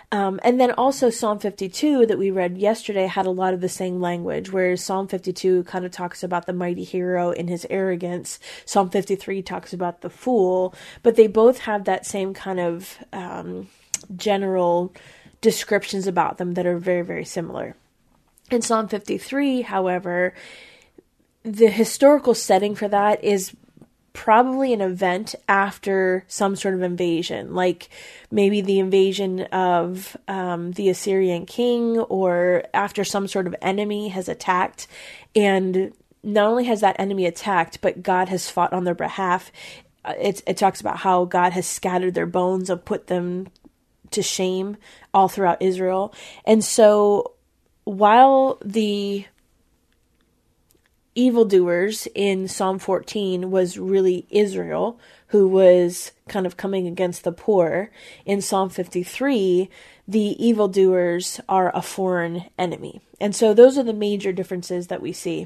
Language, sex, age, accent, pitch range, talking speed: English, female, 20-39, American, 180-210 Hz, 145 wpm